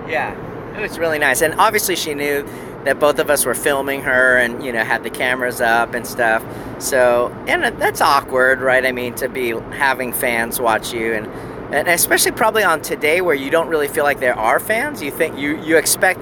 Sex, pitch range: male, 130-160 Hz